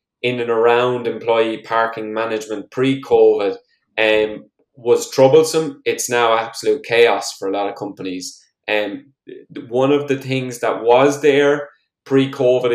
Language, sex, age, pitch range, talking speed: English, male, 20-39, 110-140 Hz, 125 wpm